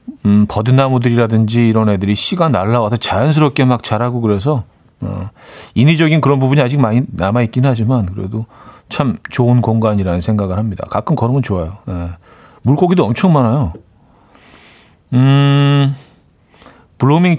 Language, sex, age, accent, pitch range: Korean, male, 40-59, native, 110-155 Hz